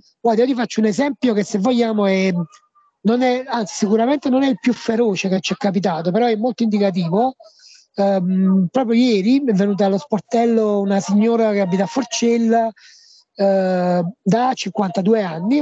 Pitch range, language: 190-235 Hz, Italian